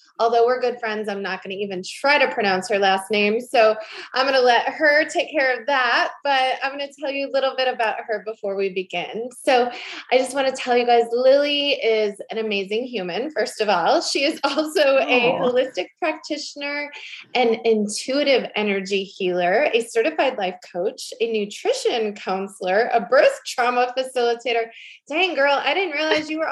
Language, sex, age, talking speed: English, female, 20-39, 190 wpm